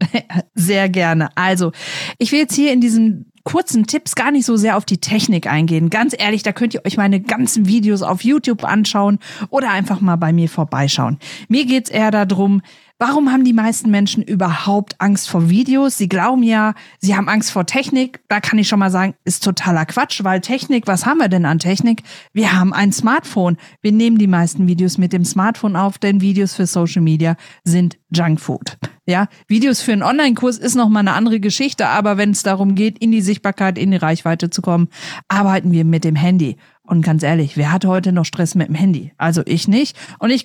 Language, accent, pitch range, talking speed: German, German, 180-225 Hz, 210 wpm